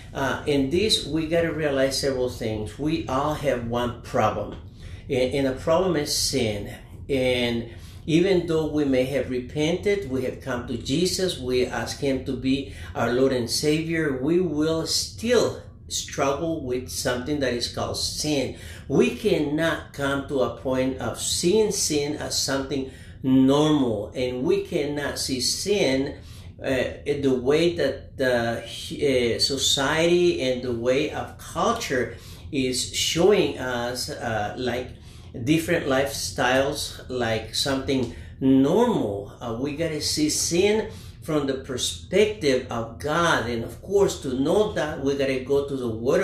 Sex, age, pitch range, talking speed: male, 50-69, 120-150 Hz, 145 wpm